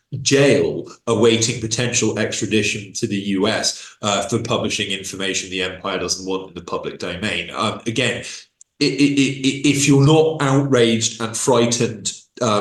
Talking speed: 135 wpm